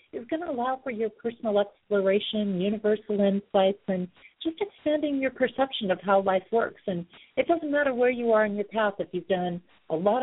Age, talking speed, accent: 50-69, 200 wpm, American